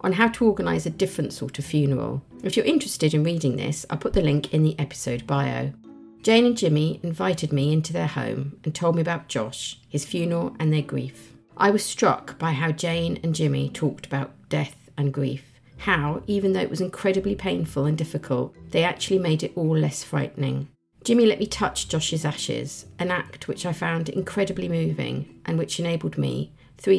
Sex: female